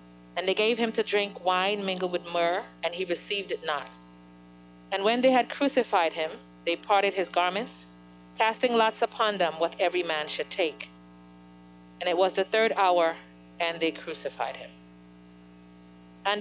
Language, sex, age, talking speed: English, female, 30-49, 165 wpm